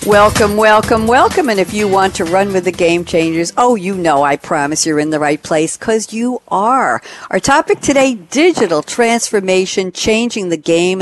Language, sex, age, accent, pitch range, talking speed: English, female, 60-79, American, 170-235 Hz, 185 wpm